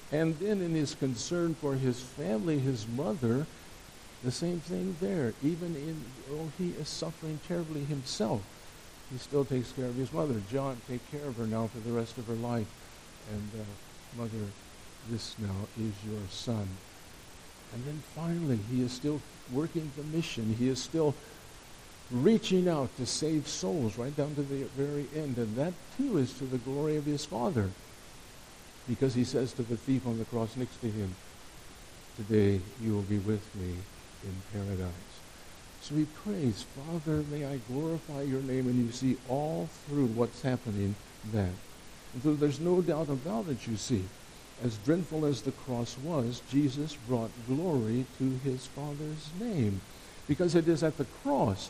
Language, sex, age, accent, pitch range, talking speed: English, male, 60-79, American, 115-150 Hz, 170 wpm